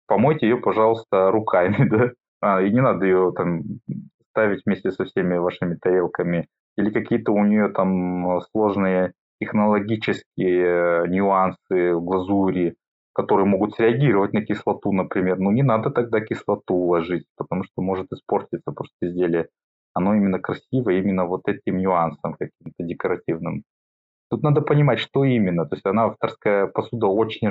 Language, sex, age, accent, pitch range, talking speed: Russian, male, 20-39, native, 90-115 Hz, 140 wpm